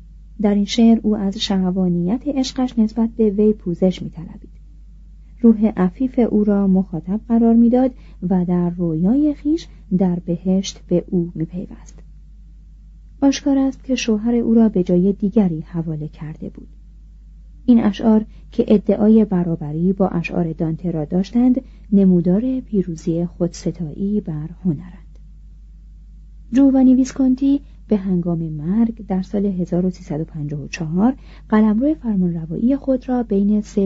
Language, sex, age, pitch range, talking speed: Persian, female, 40-59, 180-230 Hz, 125 wpm